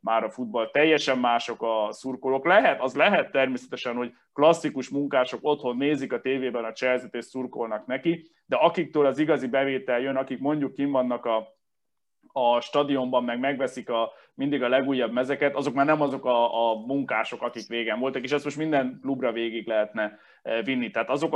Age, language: 20-39, Hungarian